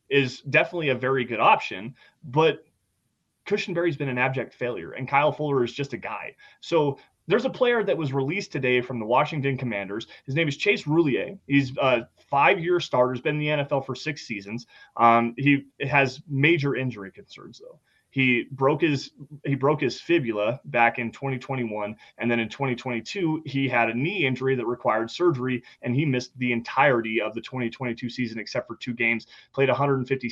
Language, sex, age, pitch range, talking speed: English, male, 30-49, 120-150 Hz, 185 wpm